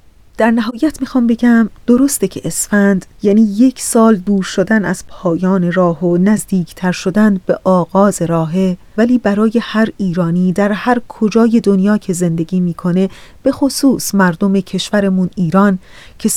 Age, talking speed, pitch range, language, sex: 30-49, 145 wpm, 185-225 Hz, Persian, female